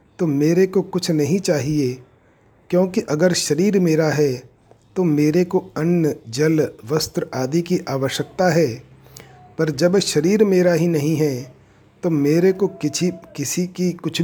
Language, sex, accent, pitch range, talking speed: Hindi, male, native, 135-170 Hz, 150 wpm